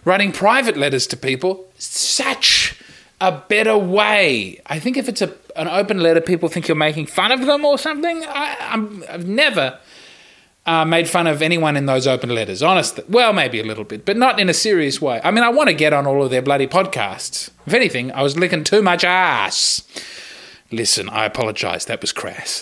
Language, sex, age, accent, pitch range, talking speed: English, male, 20-39, Australian, 135-200 Hz, 205 wpm